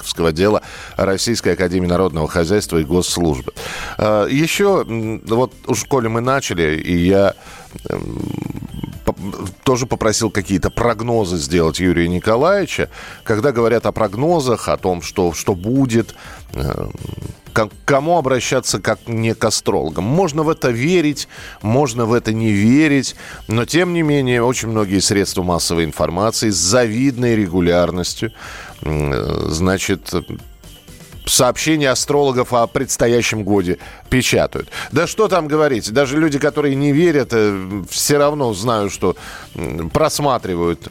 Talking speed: 115 wpm